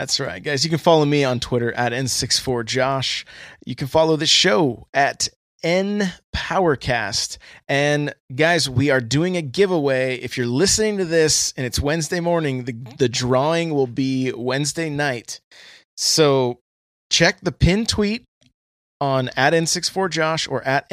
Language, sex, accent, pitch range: English, male, American, 125-155 Hz